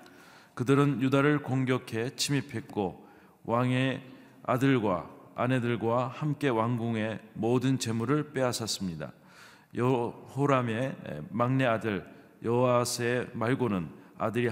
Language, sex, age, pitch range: Korean, male, 40-59, 105-130 Hz